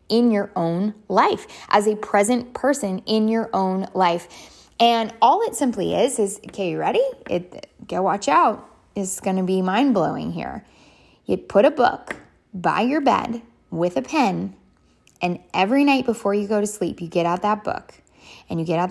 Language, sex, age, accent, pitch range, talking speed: English, female, 10-29, American, 180-235 Hz, 180 wpm